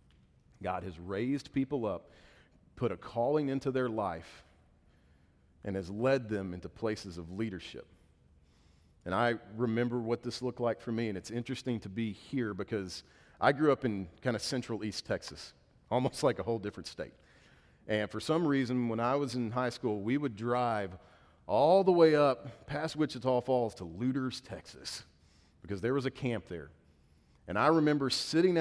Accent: American